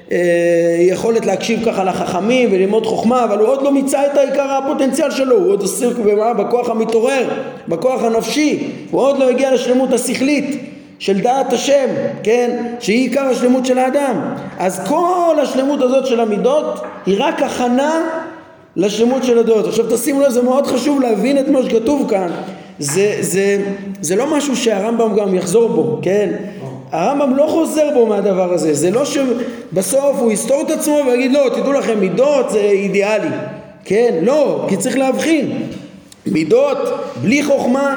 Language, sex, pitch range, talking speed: Hebrew, male, 210-275 Hz, 155 wpm